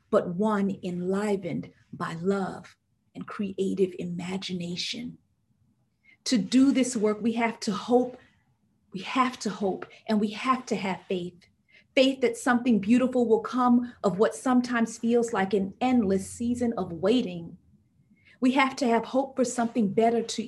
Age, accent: 40-59, American